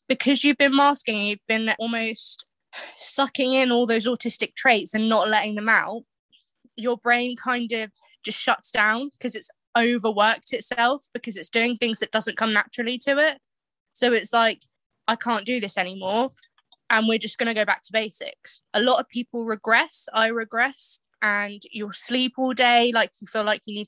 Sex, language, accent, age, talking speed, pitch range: female, English, British, 20-39, 185 wpm, 215-245 Hz